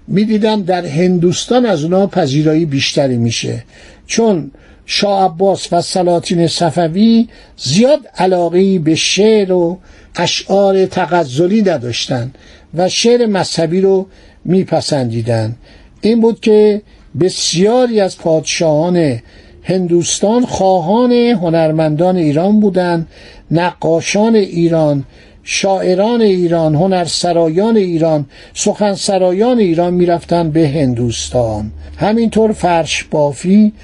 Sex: male